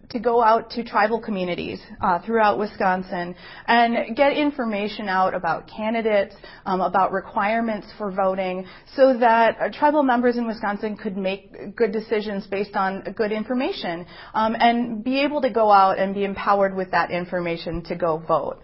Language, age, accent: English, 30-49, American